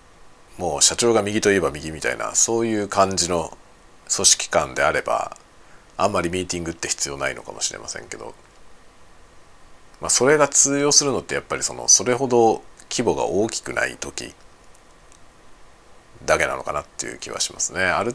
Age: 50-69